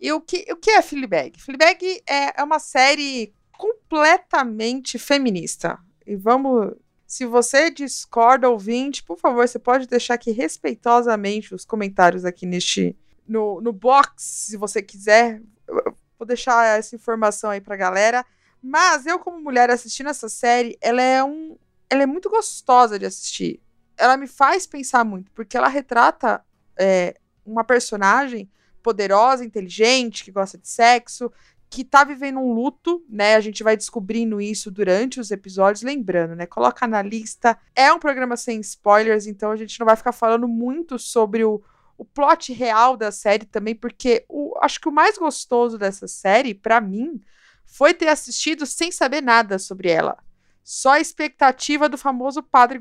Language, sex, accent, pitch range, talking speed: Portuguese, female, Brazilian, 220-280 Hz, 160 wpm